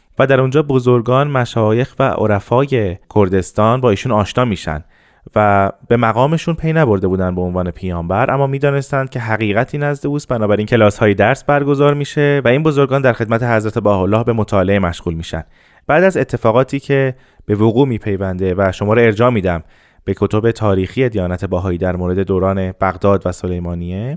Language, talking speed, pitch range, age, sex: Persian, 165 wpm, 100-130 Hz, 30-49, male